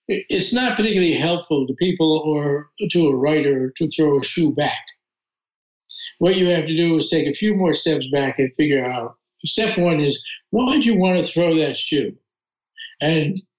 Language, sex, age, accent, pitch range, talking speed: English, male, 60-79, American, 140-170 Hz, 185 wpm